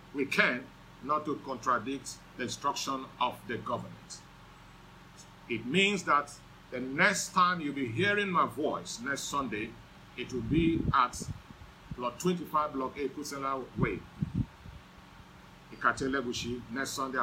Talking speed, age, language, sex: 120 wpm, 50-69, English, male